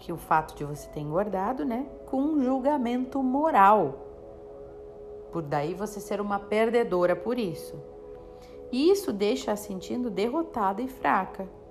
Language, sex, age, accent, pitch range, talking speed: Portuguese, female, 50-69, Brazilian, 160-220 Hz, 145 wpm